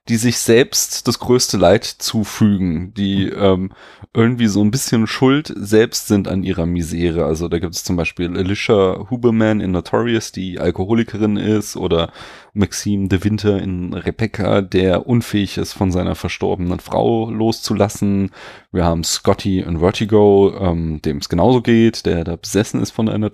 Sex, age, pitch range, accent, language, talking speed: male, 30-49, 95-110 Hz, German, German, 155 wpm